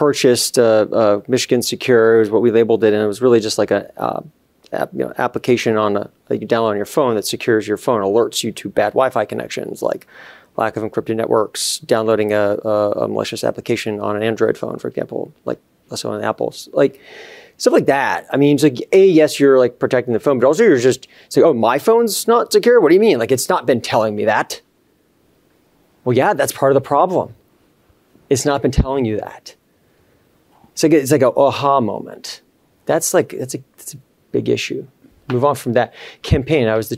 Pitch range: 110-140 Hz